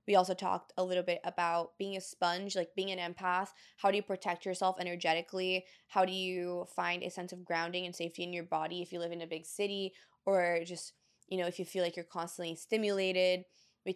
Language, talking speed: English, 225 wpm